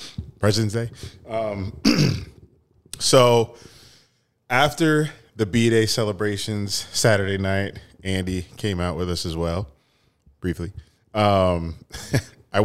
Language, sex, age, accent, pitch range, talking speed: English, male, 20-39, American, 85-110 Hz, 95 wpm